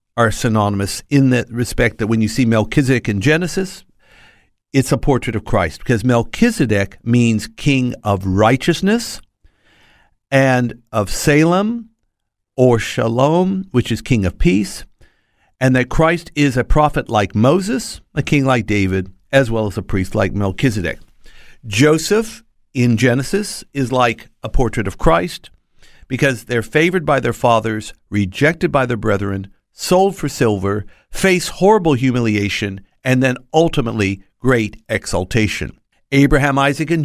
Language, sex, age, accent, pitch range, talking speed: English, male, 50-69, American, 110-145 Hz, 140 wpm